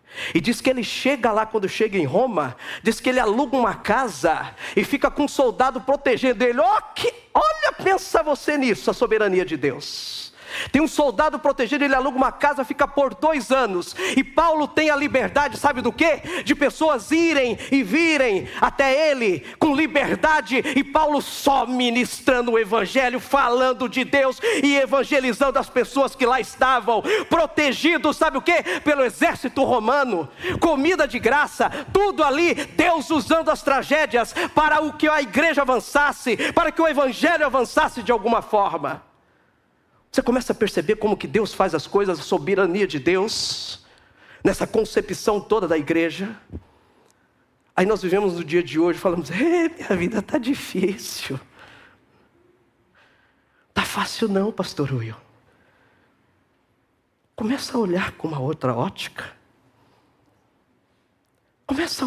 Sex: male